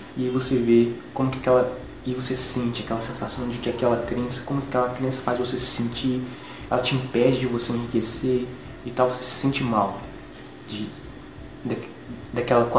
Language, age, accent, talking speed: English, 20-39, Brazilian, 170 wpm